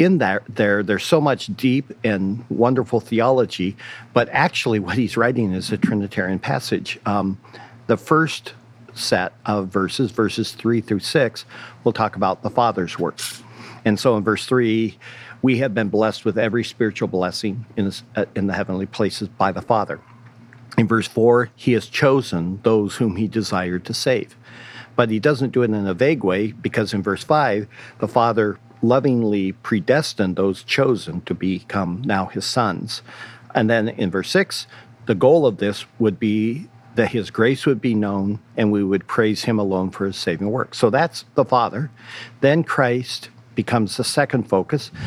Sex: male